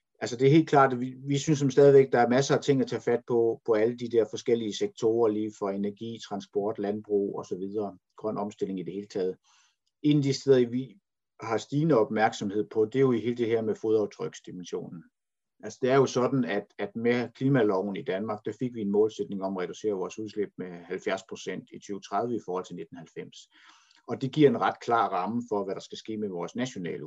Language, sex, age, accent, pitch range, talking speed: Danish, male, 50-69, native, 105-135 Hz, 220 wpm